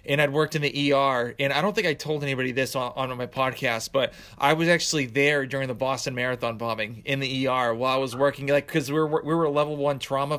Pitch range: 135-155 Hz